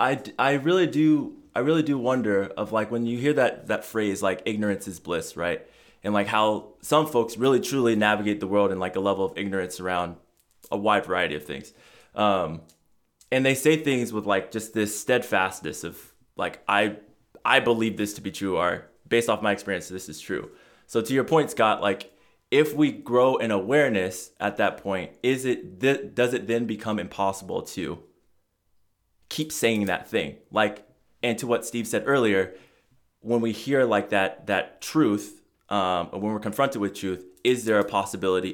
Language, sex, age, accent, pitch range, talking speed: English, male, 20-39, American, 95-120 Hz, 190 wpm